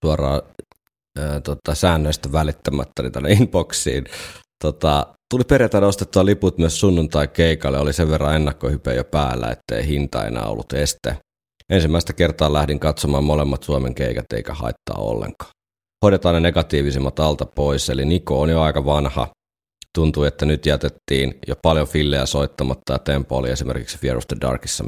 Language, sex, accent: Finnish, male, native